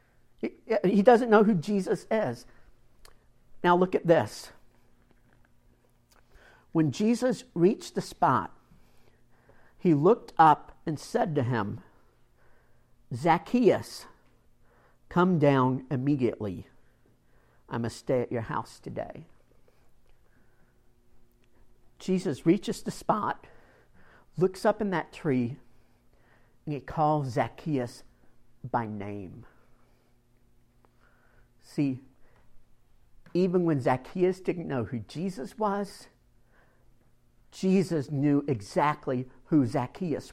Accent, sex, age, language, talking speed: American, male, 50-69, English, 90 wpm